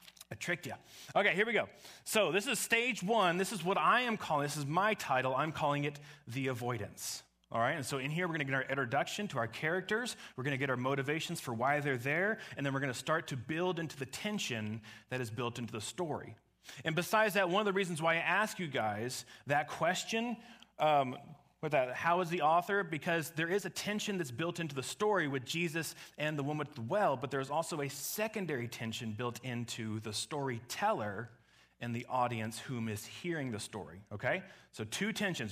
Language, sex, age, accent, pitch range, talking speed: English, male, 30-49, American, 115-170 Hz, 220 wpm